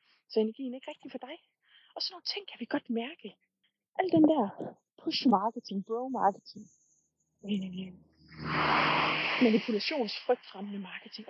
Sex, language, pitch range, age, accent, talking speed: female, Danish, 210-285 Hz, 20-39, native, 125 wpm